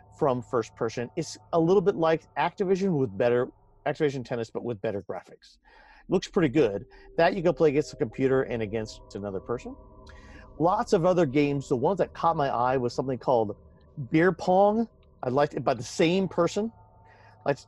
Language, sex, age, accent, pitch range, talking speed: English, male, 40-59, American, 125-195 Hz, 195 wpm